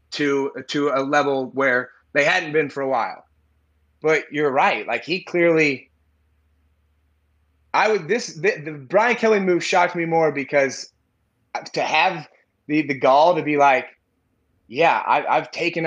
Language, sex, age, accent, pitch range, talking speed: English, male, 20-39, American, 145-195 Hz, 165 wpm